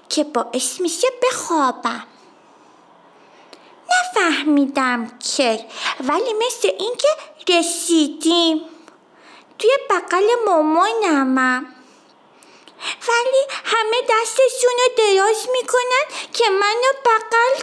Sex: female